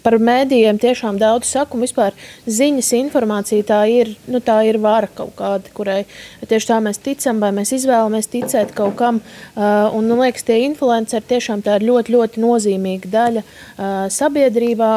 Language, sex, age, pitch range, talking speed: English, female, 20-39, 220-275 Hz, 150 wpm